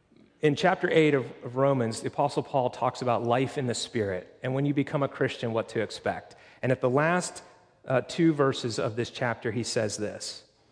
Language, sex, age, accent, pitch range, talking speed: English, male, 40-59, American, 115-140 Hz, 205 wpm